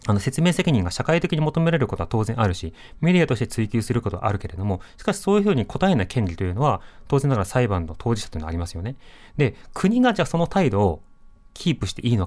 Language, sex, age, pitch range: Japanese, male, 30-49, 100-160 Hz